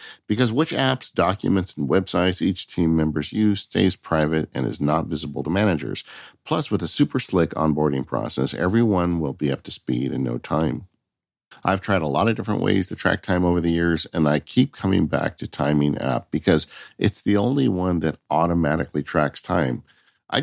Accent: American